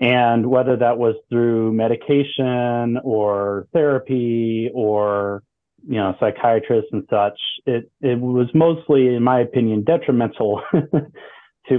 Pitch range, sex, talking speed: 115-135 Hz, male, 115 wpm